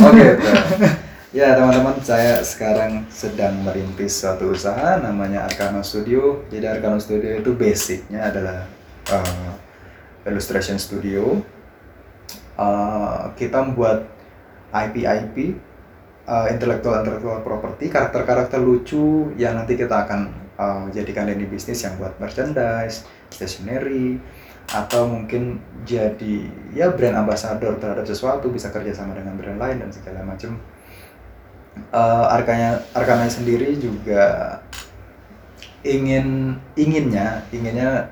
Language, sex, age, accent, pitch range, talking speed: Indonesian, male, 20-39, native, 100-125 Hz, 105 wpm